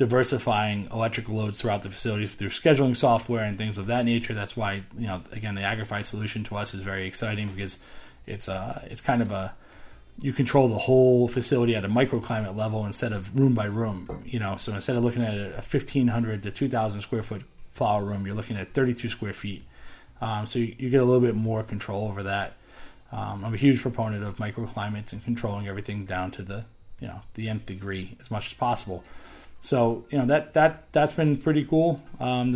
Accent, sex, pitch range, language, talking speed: American, male, 105-125 Hz, English, 210 wpm